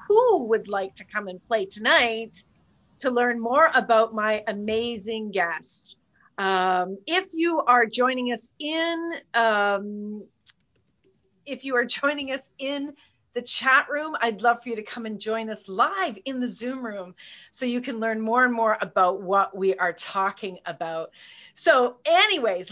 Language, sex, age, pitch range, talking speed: English, female, 40-59, 195-265 Hz, 160 wpm